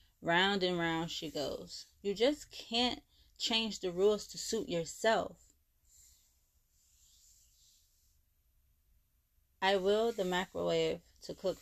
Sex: female